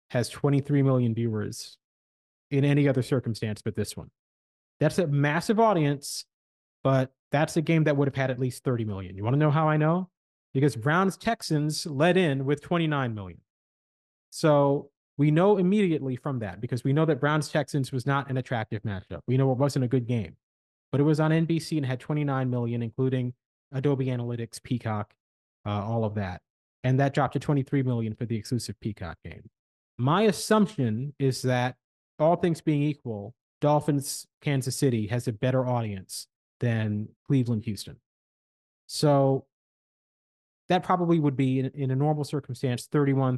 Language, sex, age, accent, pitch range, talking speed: English, male, 30-49, American, 115-145 Hz, 165 wpm